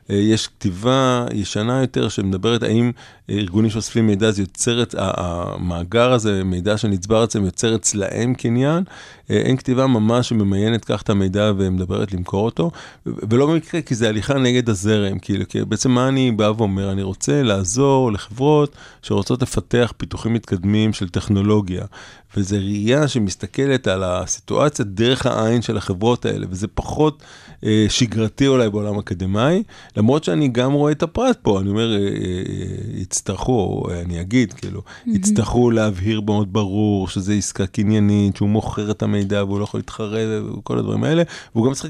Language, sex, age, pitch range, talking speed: Hebrew, male, 30-49, 100-125 Hz, 150 wpm